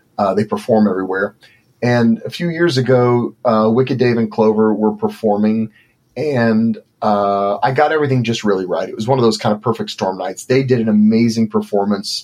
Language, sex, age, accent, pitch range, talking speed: English, male, 30-49, American, 105-125 Hz, 190 wpm